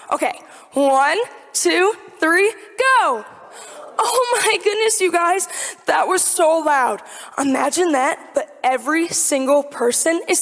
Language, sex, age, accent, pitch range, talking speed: English, female, 10-29, American, 285-395 Hz, 120 wpm